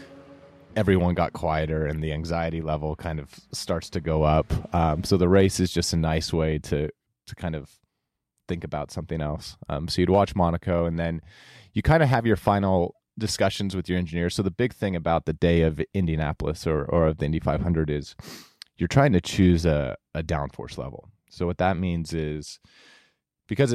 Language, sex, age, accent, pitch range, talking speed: English, male, 30-49, American, 80-90 Hz, 195 wpm